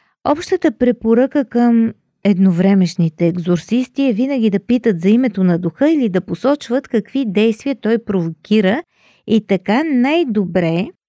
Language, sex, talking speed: Bulgarian, female, 125 wpm